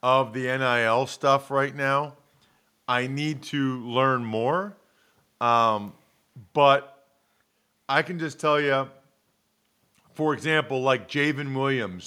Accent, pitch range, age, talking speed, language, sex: American, 125-150 Hz, 40-59, 115 wpm, English, male